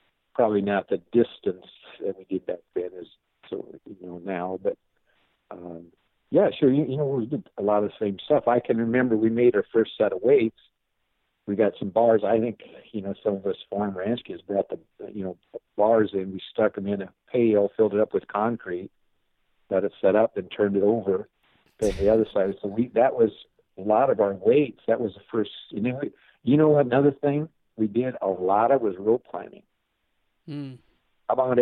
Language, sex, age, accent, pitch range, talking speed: English, male, 60-79, American, 95-120 Hz, 210 wpm